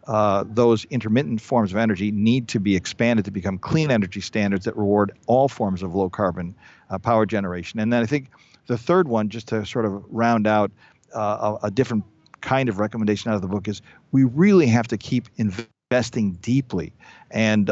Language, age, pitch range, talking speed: English, 50-69, 105-130 Hz, 195 wpm